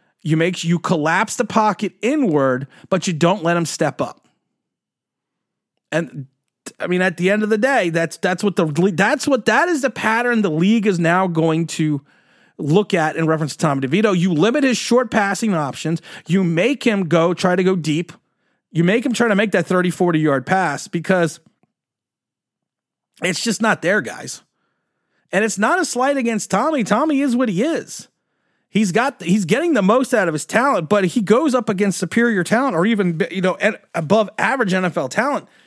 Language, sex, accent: English, male, American